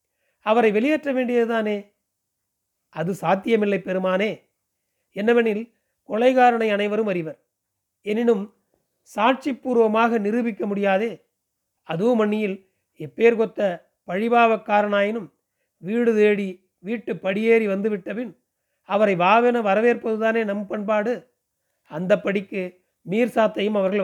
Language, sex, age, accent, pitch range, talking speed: Tamil, male, 40-59, native, 190-230 Hz, 80 wpm